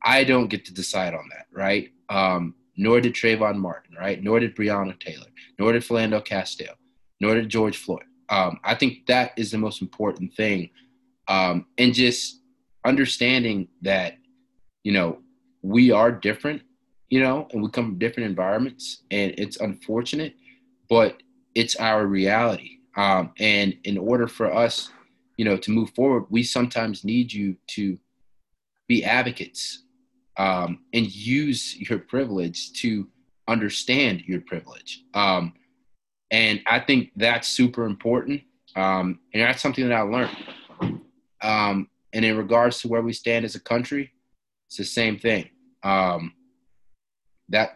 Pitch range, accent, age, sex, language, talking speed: 100-130 Hz, American, 30-49, male, English, 150 wpm